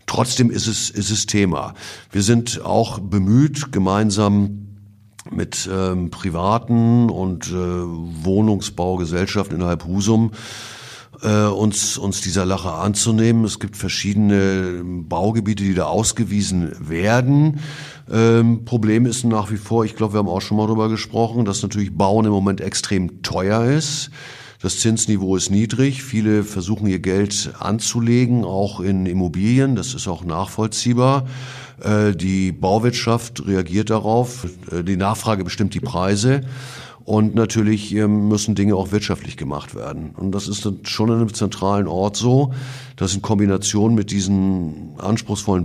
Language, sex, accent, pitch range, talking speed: German, male, German, 95-115 Hz, 135 wpm